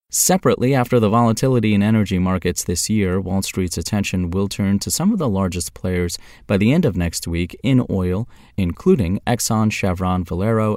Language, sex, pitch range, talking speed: English, male, 85-110 Hz, 180 wpm